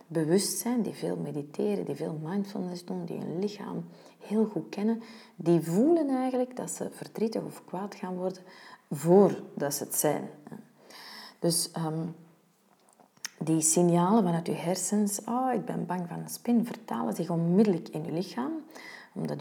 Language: Dutch